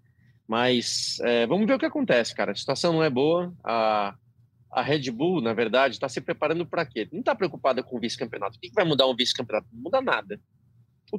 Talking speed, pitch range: 215 wpm, 115-140 Hz